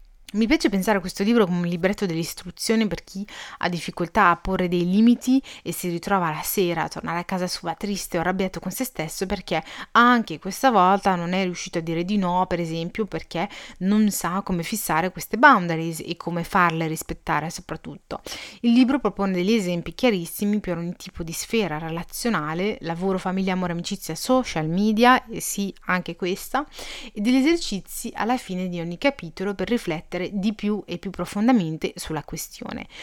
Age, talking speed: 30-49, 180 wpm